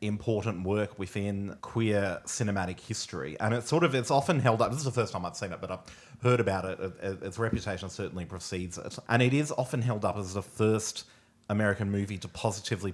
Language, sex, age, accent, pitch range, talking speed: English, male, 30-49, Australian, 95-115 Hz, 210 wpm